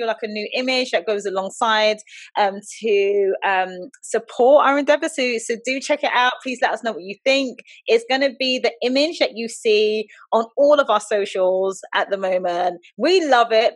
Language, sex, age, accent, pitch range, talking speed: English, female, 20-39, British, 195-265 Hz, 200 wpm